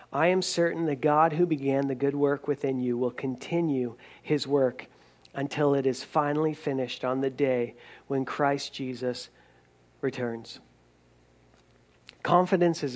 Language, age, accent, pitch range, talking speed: English, 40-59, American, 120-150 Hz, 140 wpm